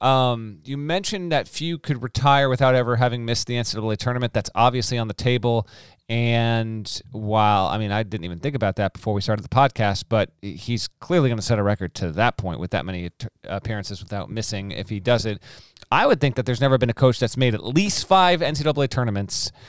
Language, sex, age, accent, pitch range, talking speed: English, male, 30-49, American, 110-140 Hz, 215 wpm